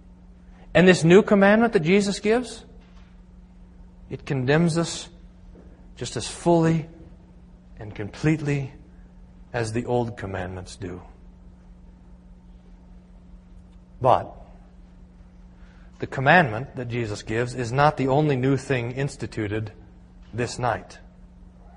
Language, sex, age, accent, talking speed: English, male, 40-59, American, 95 wpm